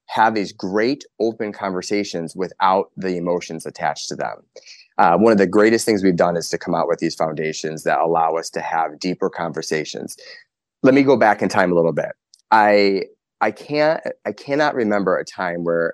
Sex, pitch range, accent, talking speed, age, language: male, 85-105 Hz, American, 190 wpm, 30-49, English